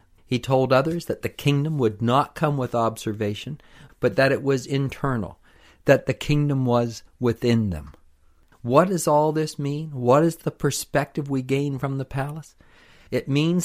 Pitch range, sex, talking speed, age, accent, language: 105-145 Hz, male, 165 wpm, 50-69, American, English